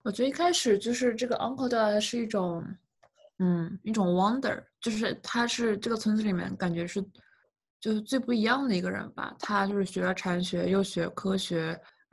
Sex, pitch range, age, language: female, 180-215 Hz, 20-39, Chinese